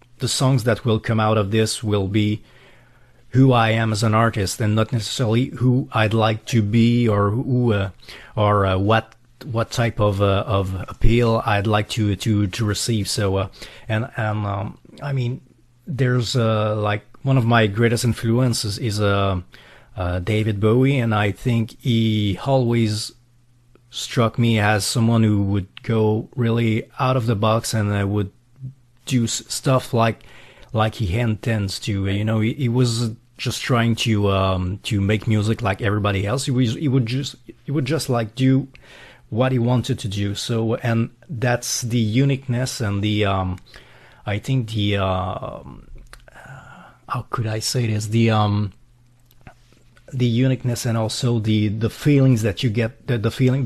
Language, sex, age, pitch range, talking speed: English, male, 30-49, 105-125 Hz, 170 wpm